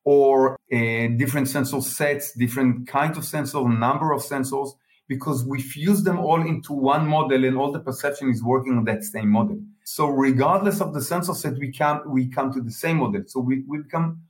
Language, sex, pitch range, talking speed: English, male, 130-155 Hz, 195 wpm